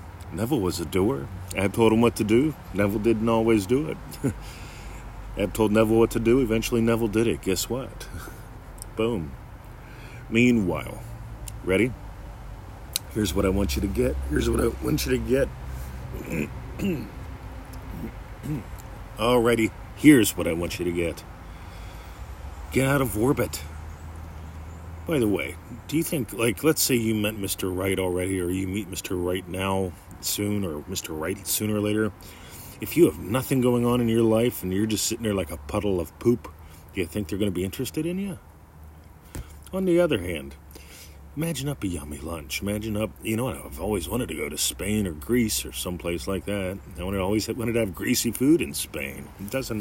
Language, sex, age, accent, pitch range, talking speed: English, male, 40-59, American, 85-115 Hz, 180 wpm